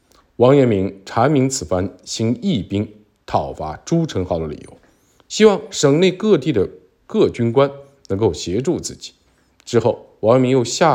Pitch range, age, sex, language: 110-160 Hz, 50-69, male, Chinese